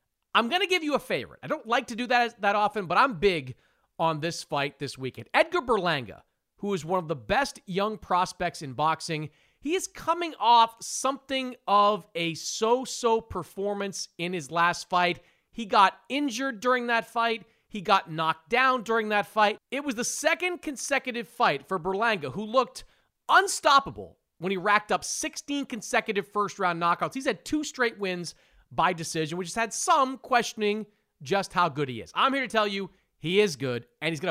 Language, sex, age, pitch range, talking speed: English, male, 40-59, 165-240 Hz, 190 wpm